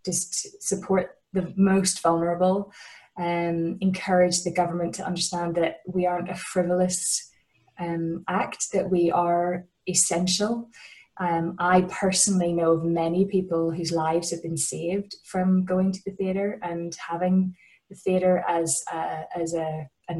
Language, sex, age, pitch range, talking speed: English, female, 20-39, 170-190 Hz, 135 wpm